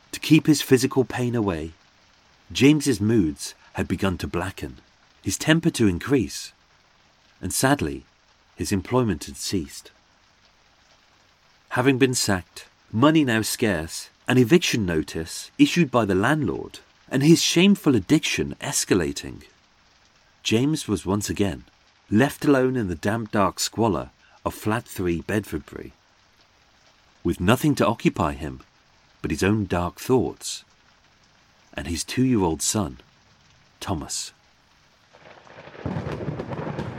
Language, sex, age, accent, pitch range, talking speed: English, male, 40-59, British, 95-130 Hz, 115 wpm